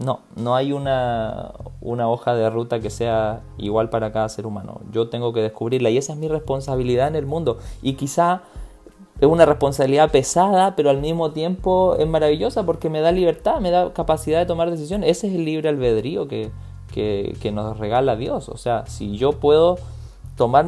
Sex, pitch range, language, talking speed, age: male, 120-170 Hz, Spanish, 190 wpm, 20-39